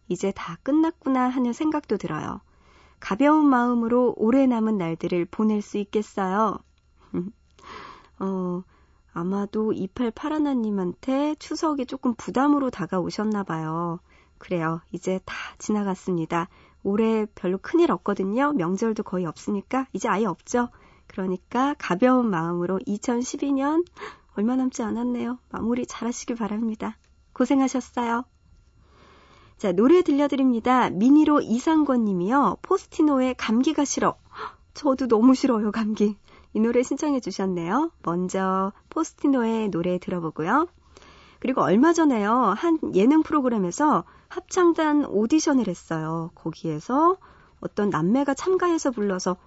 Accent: native